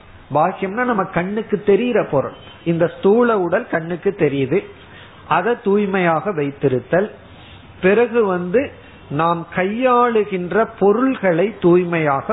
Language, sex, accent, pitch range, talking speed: Tamil, male, native, 140-195 Hz, 75 wpm